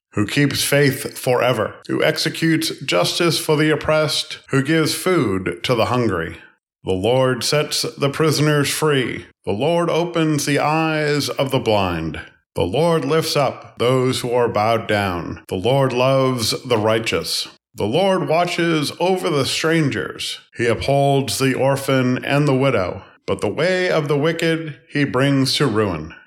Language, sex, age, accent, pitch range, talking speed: English, male, 40-59, American, 125-160 Hz, 155 wpm